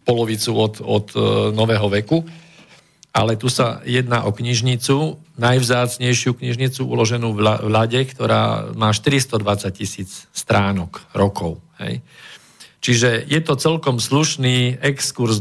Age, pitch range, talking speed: 50-69, 110-135 Hz, 110 wpm